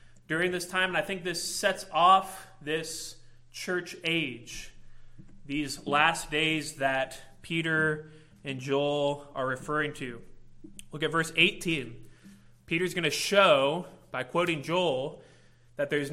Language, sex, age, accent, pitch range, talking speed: English, male, 20-39, American, 140-185 Hz, 130 wpm